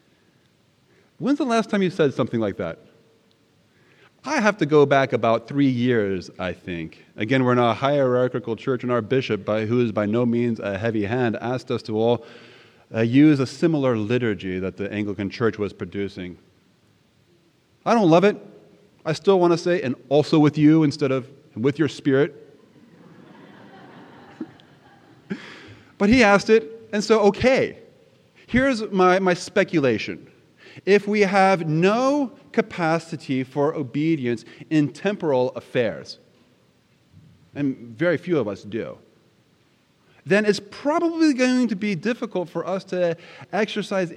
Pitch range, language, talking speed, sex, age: 120-190 Hz, English, 145 wpm, male, 30-49